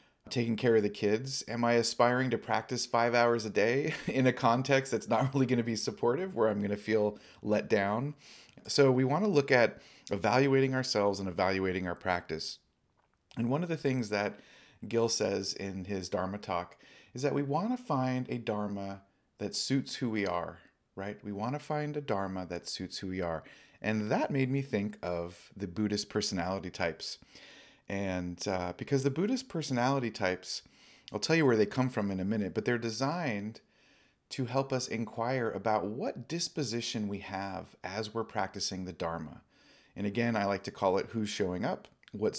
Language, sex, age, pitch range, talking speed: English, male, 30-49, 95-130 Hz, 190 wpm